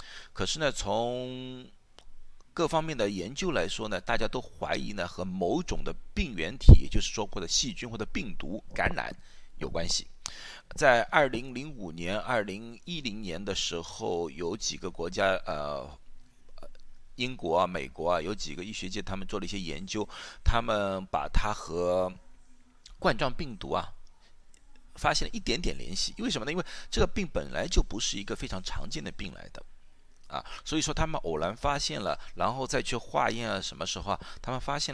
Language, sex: Chinese, male